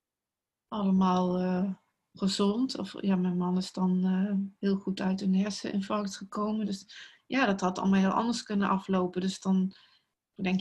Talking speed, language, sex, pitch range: 160 wpm, Dutch, female, 185-200 Hz